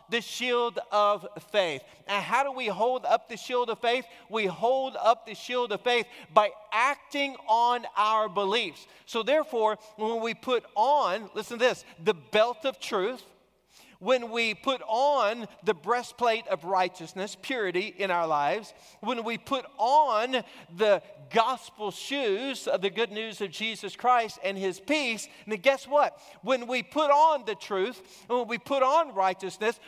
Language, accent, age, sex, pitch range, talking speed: English, American, 40-59, male, 200-255 Hz, 165 wpm